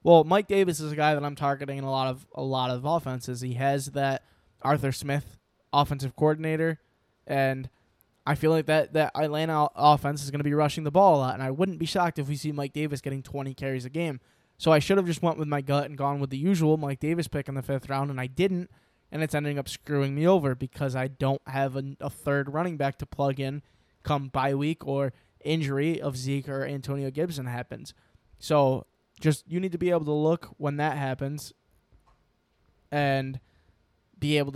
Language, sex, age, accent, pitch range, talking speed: English, male, 10-29, American, 135-160 Hz, 220 wpm